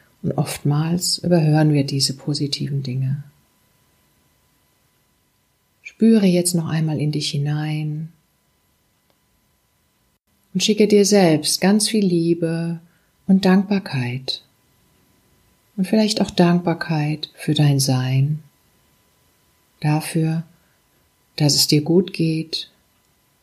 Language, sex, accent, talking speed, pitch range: German, female, German, 90 wpm, 140-175 Hz